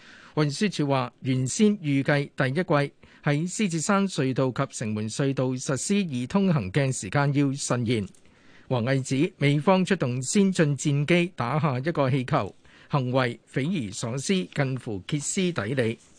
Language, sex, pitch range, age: Chinese, male, 130-175 Hz, 50-69